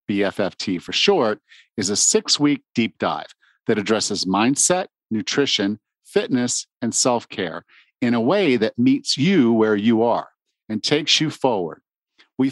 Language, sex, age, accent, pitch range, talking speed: English, male, 50-69, American, 110-155 Hz, 150 wpm